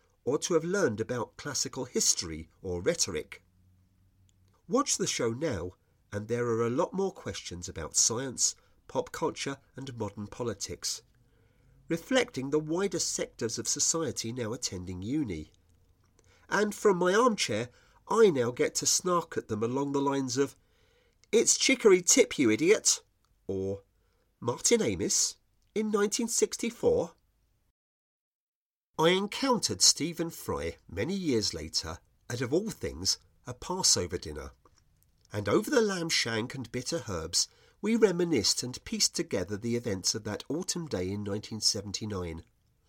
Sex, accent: male, British